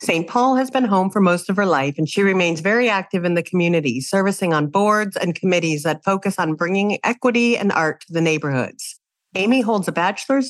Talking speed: 210 wpm